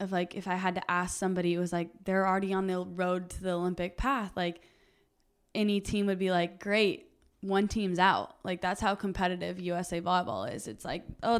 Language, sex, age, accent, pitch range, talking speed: English, female, 20-39, American, 180-210 Hz, 210 wpm